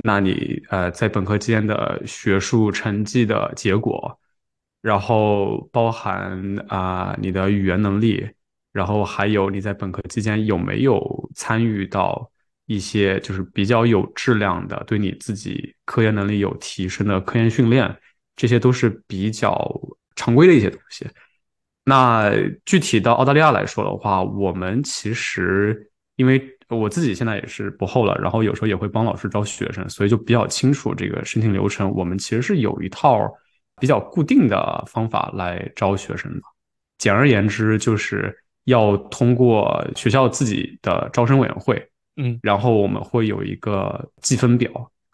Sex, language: male, Chinese